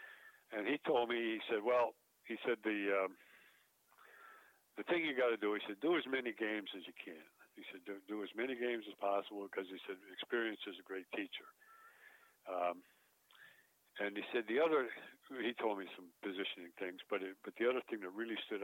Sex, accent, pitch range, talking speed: male, American, 95-120 Hz, 205 wpm